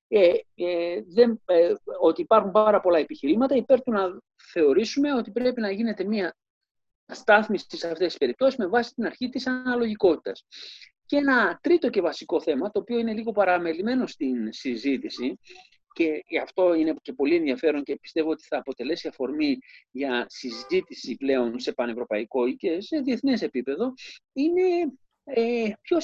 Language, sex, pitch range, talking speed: Greek, male, 155-260 Hz, 150 wpm